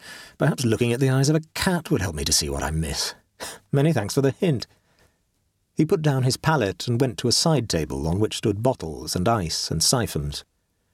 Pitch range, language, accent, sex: 90-145 Hz, English, British, male